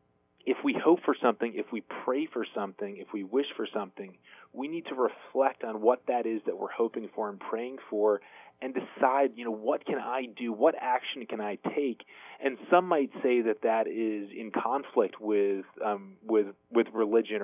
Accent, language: American, English